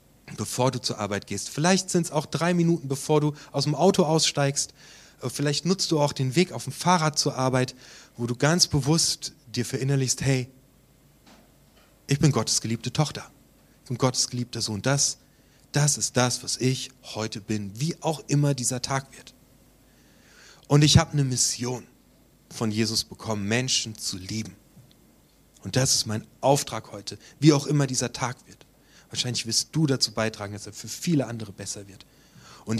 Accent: German